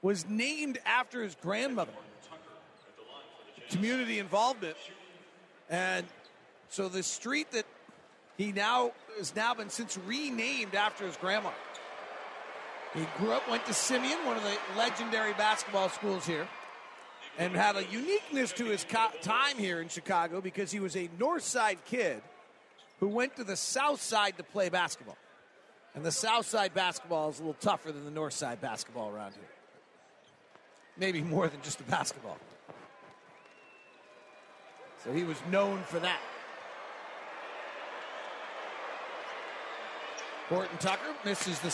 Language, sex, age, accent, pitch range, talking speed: English, male, 40-59, American, 175-225 Hz, 135 wpm